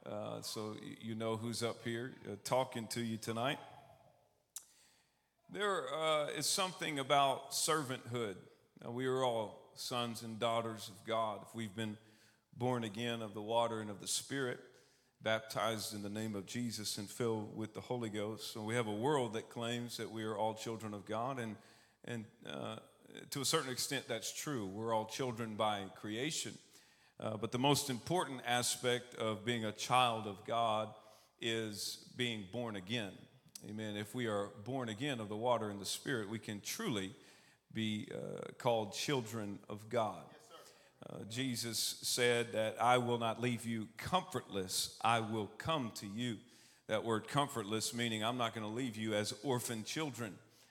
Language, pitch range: English, 110-125 Hz